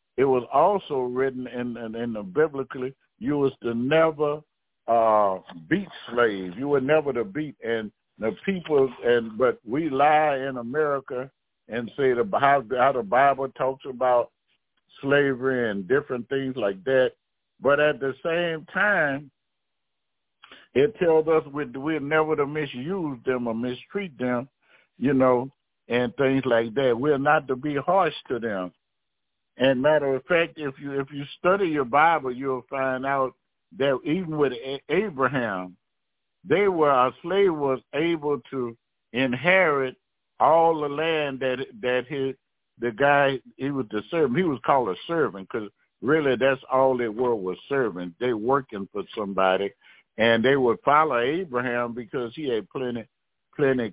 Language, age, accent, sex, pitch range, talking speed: English, 60-79, American, male, 120-145 Hz, 155 wpm